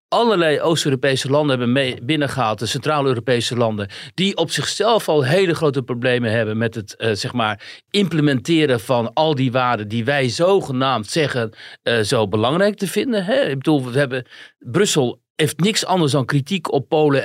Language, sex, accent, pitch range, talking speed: Dutch, male, Dutch, 130-175 Hz, 170 wpm